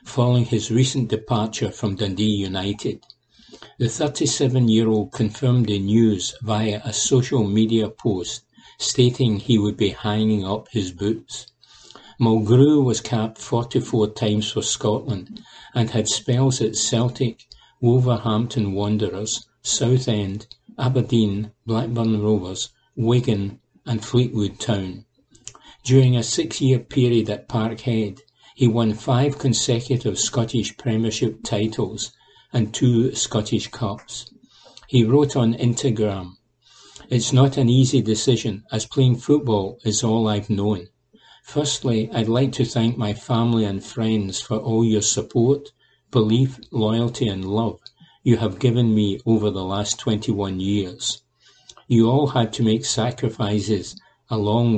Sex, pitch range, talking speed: male, 105-125 Hz, 125 wpm